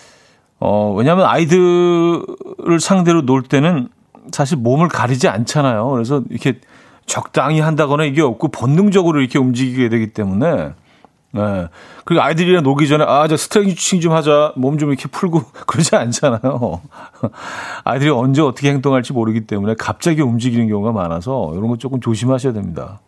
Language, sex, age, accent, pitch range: Korean, male, 40-59, native, 105-155 Hz